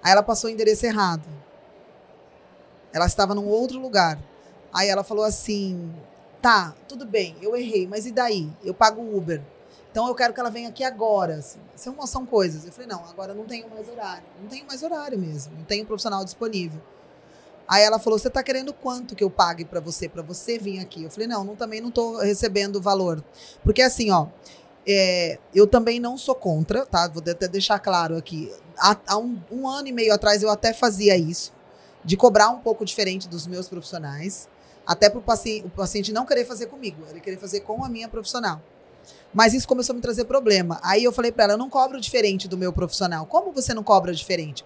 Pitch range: 185-235 Hz